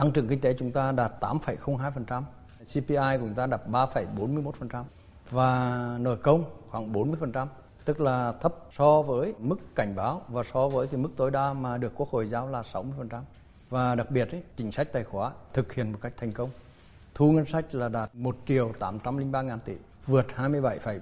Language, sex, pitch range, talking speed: Vietnamese, male, 115-135 Hz, 210 wpm